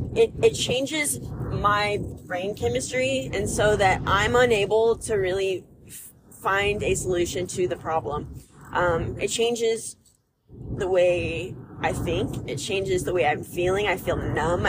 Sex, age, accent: female, 20-39, American